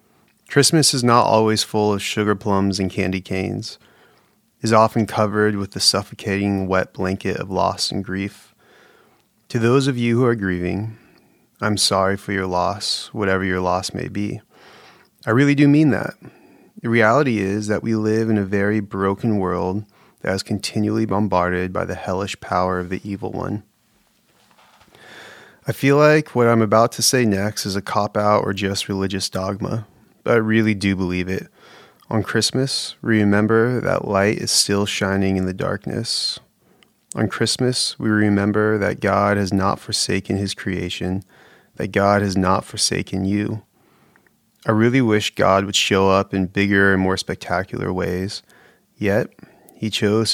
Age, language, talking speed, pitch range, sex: 30-49, English, 160 wpm, 95-110 Hz, male